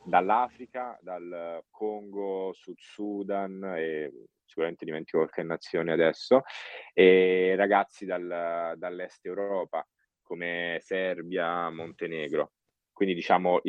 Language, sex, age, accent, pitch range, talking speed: Italian, male, 30-49, native, 85-100 Hz, 90 wpm